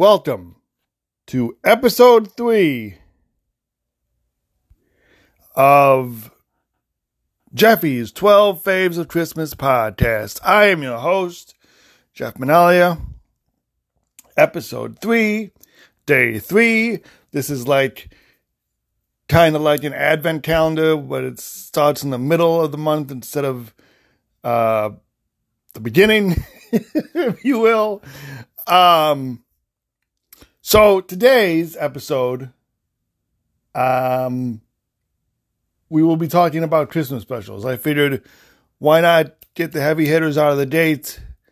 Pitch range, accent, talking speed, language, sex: 125-180 Hz, American, 105 wpm, English, male